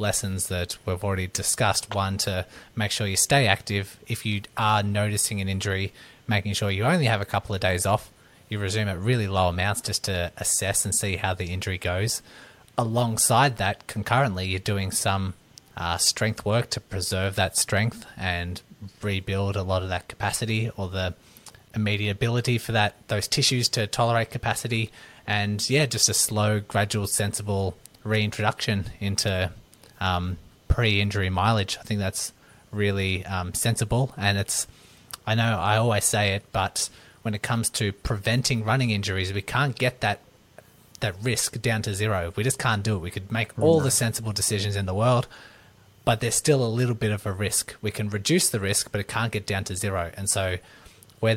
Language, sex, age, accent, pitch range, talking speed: English, male, 20-39, Australian, 95-115 Hz, 180 wpm